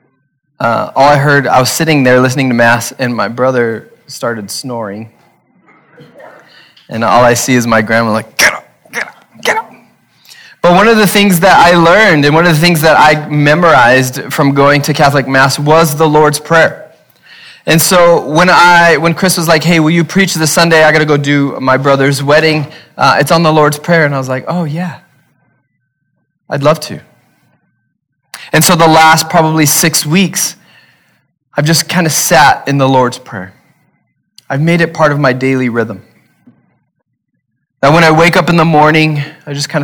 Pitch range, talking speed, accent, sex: 125-160 Hz, 190 wpm, American, male